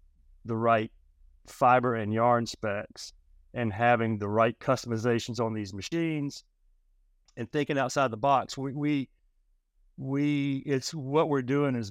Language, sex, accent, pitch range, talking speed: English, male, American, 115-135 Hz, 135 wpm